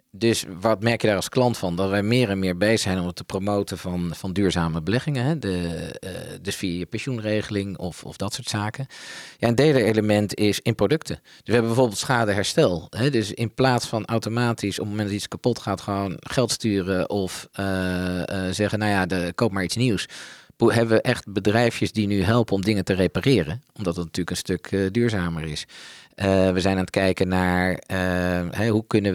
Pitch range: 90-115 Hz